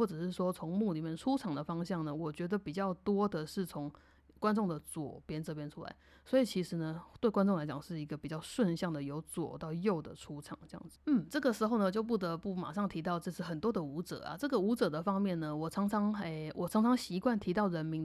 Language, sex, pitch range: Chinese, female, 160-215 Hz